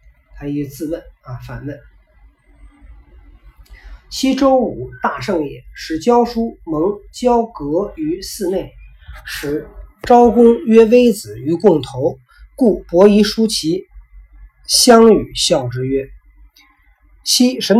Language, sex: Chinese, male